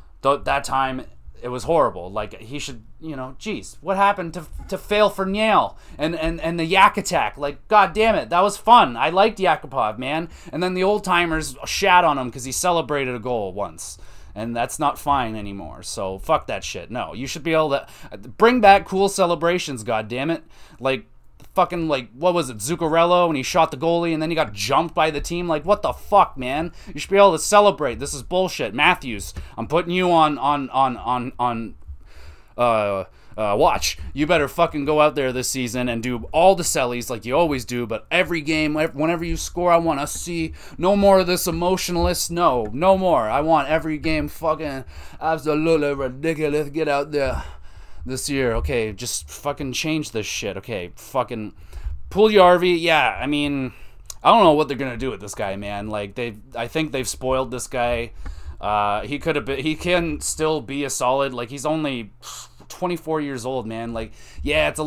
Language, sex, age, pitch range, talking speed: English, male, 30-49, 120-165 Hz, 205 wpm